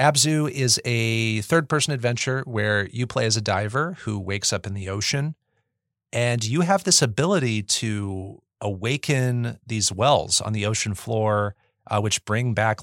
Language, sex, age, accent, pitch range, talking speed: English, male, 40-59, American, 105-135 Hz, 160 wpm